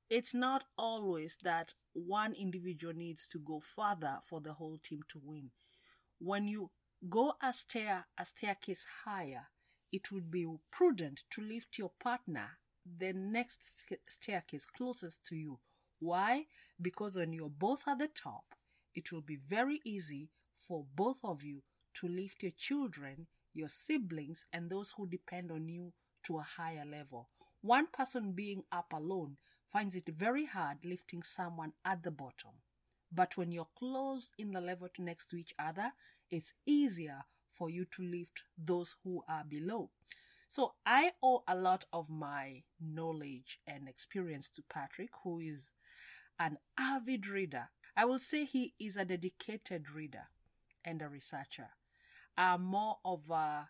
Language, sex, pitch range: English, female, 160-210 Hz